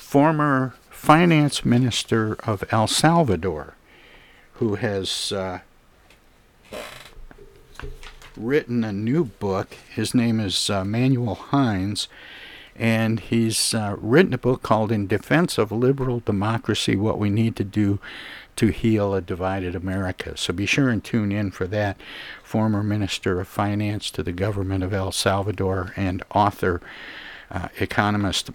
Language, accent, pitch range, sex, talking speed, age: English, American, 95-115 Hz, male, 130 wpm, 60-79